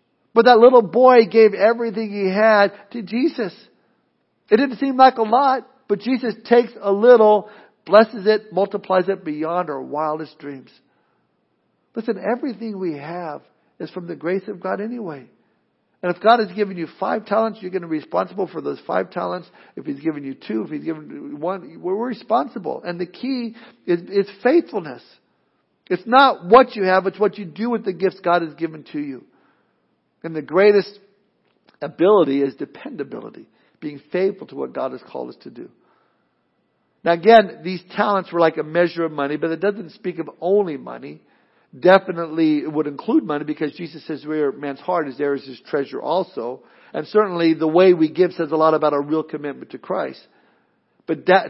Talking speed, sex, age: 185 wpm, male, 60-79